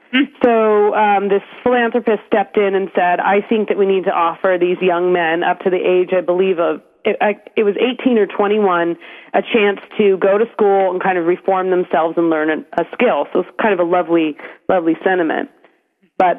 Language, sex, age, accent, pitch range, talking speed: French, female, 30-49, American, 175-205 Hz, 200 wpm